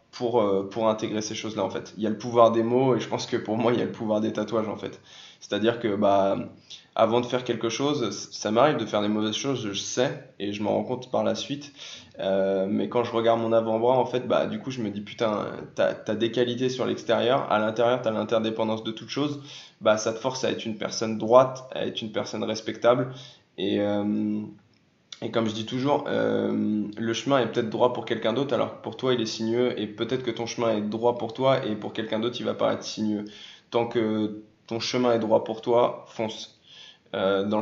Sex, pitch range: male, 105-120 Hz